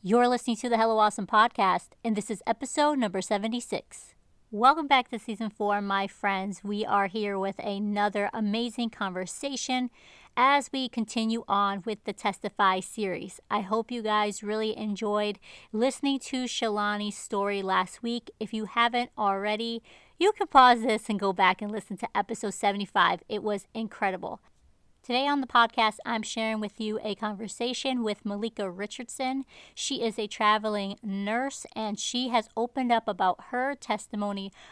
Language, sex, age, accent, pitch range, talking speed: English, female, 40-59, American, 205-235 Hz, 160 wpm